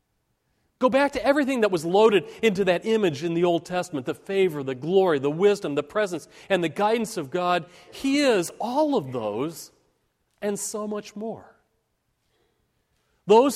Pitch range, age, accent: 165-225 Hz, 40-59, American